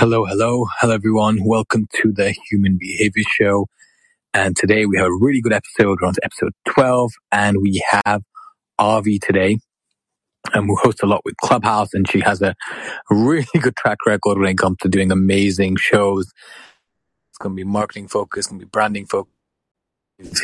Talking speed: 175 wpm